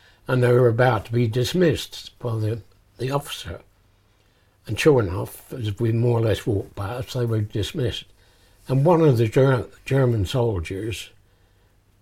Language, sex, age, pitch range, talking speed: English, male, 60-79, 100-125 Hz, 155 wpm